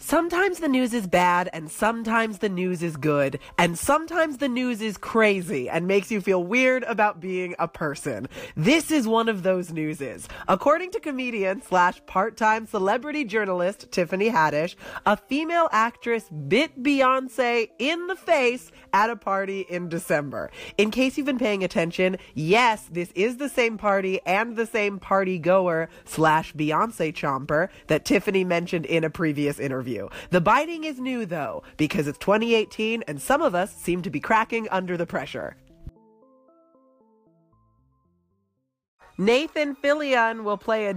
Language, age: English, 30-49